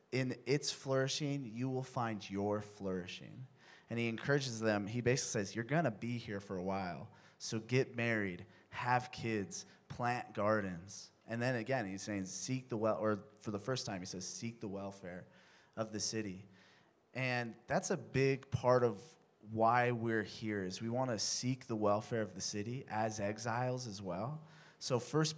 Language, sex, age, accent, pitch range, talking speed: English, male, 30-49, American, 105-130 Hz, 180 wpm